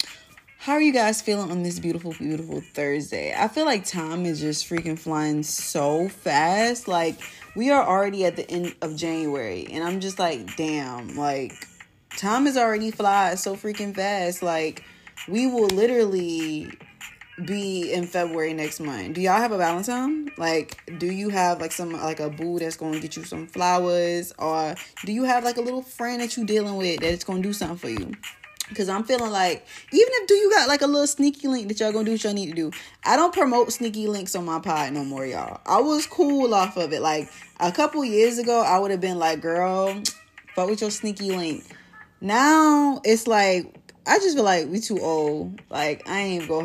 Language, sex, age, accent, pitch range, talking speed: English, female, 20-39, American, 160-215 Hz, 205 wpm